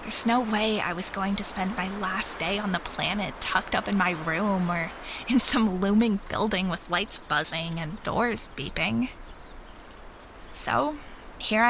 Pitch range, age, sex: 180-225 Hz, 10-29, female